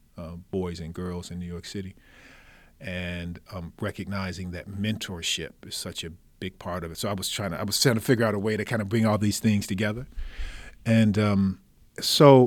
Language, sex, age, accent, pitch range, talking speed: English, male, 40-59, American, 95-125 Hz, 210 wpm